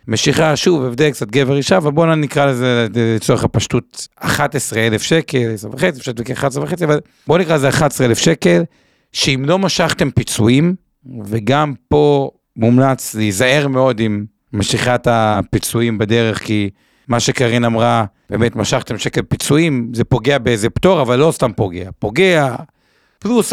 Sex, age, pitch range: male, 50-69, 115-155 Hz